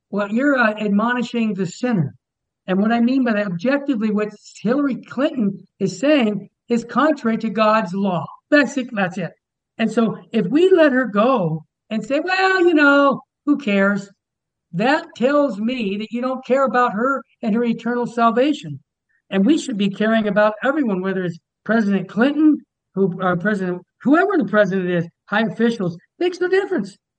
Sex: male